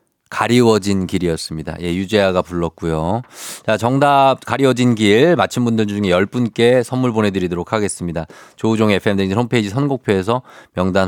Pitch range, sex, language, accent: 90-120 Hz, male, Korean, native